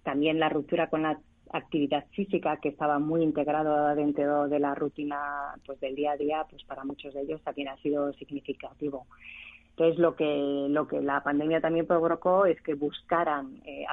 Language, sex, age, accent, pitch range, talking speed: Spanish, female, 30-49, Spanish, 140-165 Hz, 180 wpm